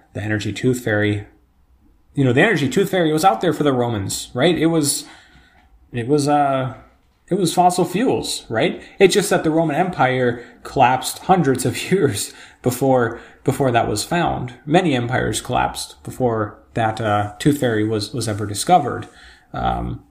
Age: 30-49